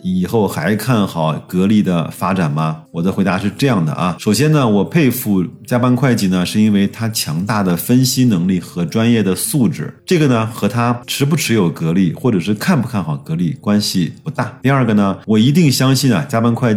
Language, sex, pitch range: Chinese, male, 100-145 Hz